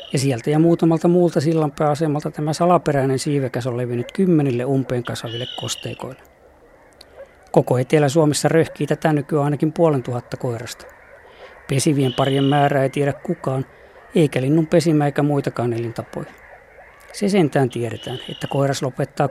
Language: Finnish